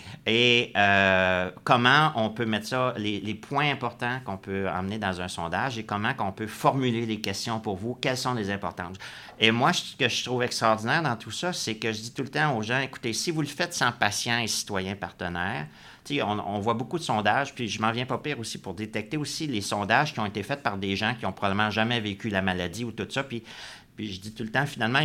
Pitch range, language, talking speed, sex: 100-125 Hz, French, 245 wpm, male